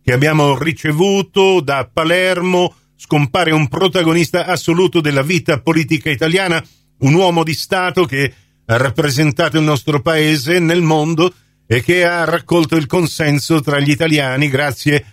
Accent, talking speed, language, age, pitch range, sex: native, 140 wpm, Italian, 50-69, 135-170 Hz, male